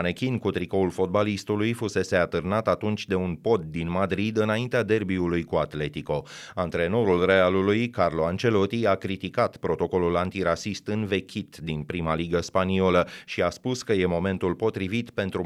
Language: Romanian